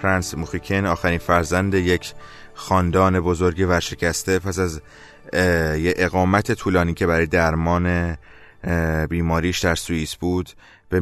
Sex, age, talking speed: male, 20-39, 115 wpm